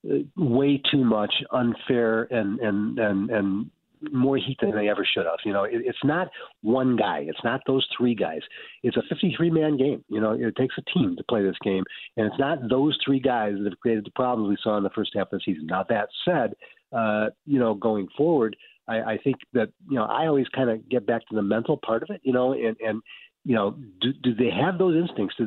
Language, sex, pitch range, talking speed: English, male, 110-150 Hz, 240 wpm